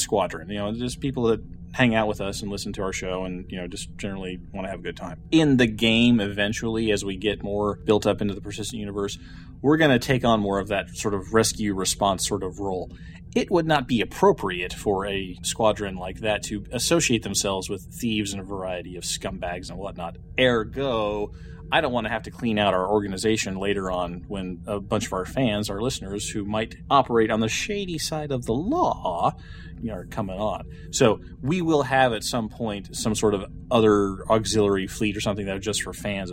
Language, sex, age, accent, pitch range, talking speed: English, male, 30-49, American, 95-110 Hz, 220 wpm